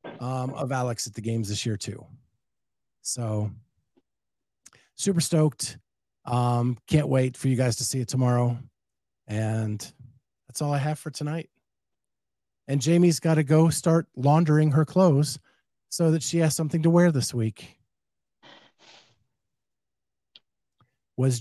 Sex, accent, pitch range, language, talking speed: male, American, 120-145 Hz, English, 135 wpm